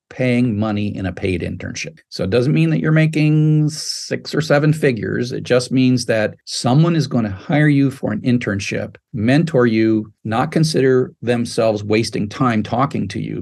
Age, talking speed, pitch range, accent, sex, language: 50-69, 180 wpm, 105-135 Hz, American, male, English